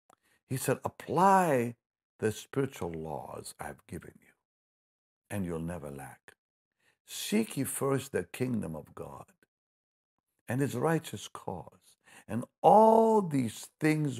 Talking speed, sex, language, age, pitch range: 120 wpm, male, English, 60-79, 85-140 Hz